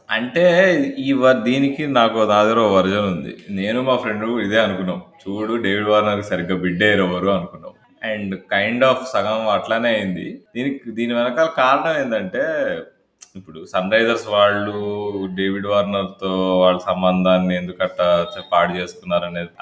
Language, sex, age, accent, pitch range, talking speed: Telugu, male, 20-39, native, 95-120 Hz, 135 wpm